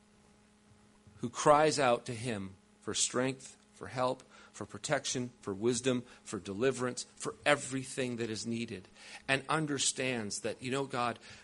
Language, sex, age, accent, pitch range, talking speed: English, male, 40-59, American, 125-195 Hz, 135 wpm